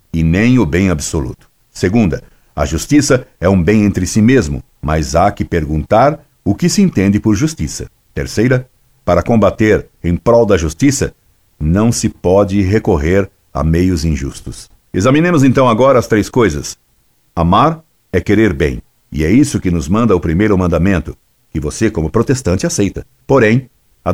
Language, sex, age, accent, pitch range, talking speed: Portuguese, male, 60-79, Brazilian, 90-125 Hz, 160 wpm